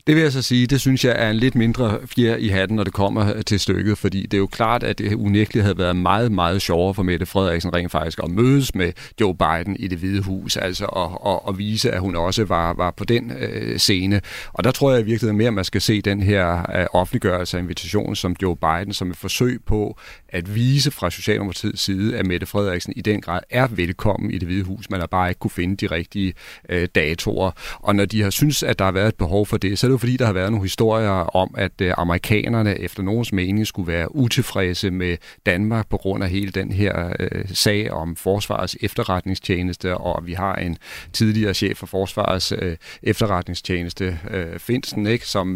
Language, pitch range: Danish, 90-110 Hz